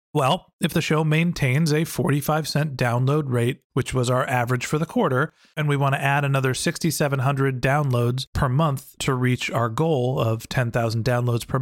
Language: English